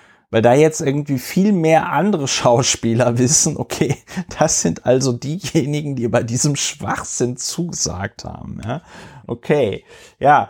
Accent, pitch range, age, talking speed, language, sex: German, 110-130 Hz, 30-49, 130 wpm, German, male